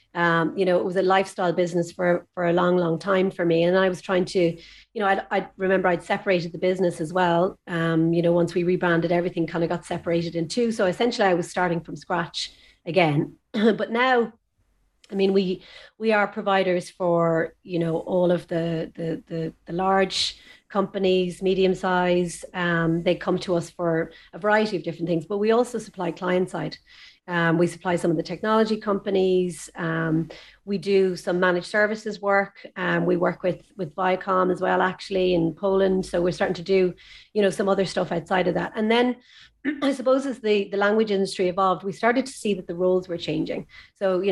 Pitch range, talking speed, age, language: 175-195 Hz, 200 wpm, 30-49, English